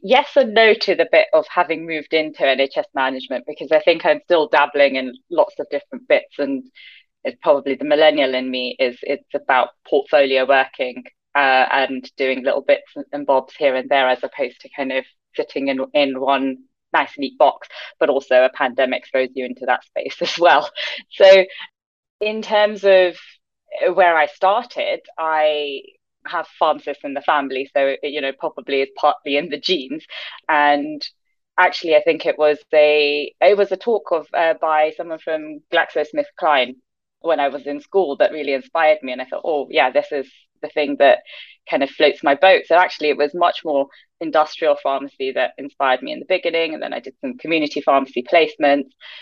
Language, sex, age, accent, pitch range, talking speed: English, female, 20-39, British, 135-195 Hz, 185 wpm